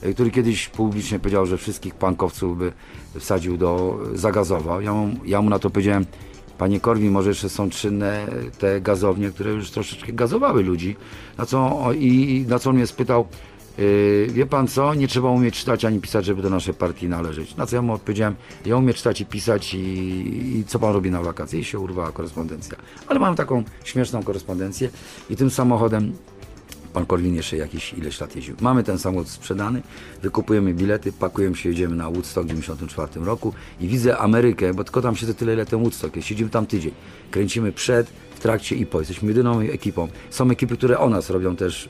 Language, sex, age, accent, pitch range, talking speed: Polish, male, 40-59, native, 95-115 Hz, 195 wpm